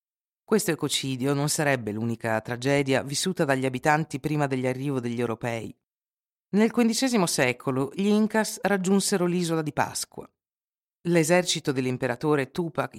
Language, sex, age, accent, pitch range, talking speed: Italian, female, 50-69, native, 125-180 Hz, 115 wpm